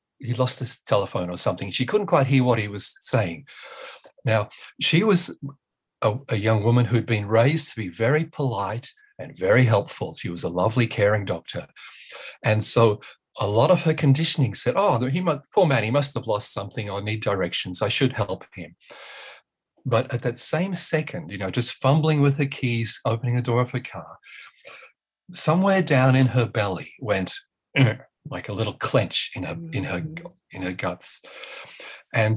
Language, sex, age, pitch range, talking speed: English, male, 40-59, 110-140 Hz, 185 wpm